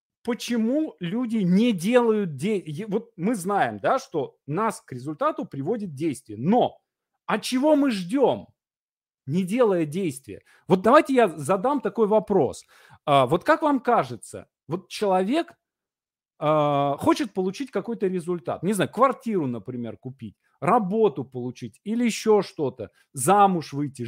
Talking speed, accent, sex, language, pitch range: 125 wpm, native, male, Russian, 165-250 Hz